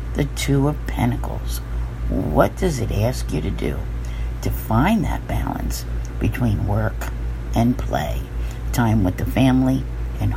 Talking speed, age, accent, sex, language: 140 wpm, 50-69, American, female, English